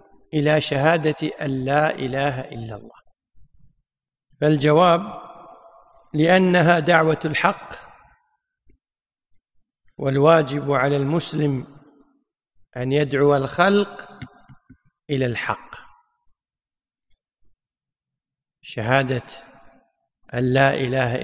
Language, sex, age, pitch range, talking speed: Arabic, male, 50-69, 135-180 Hz, 60 wpm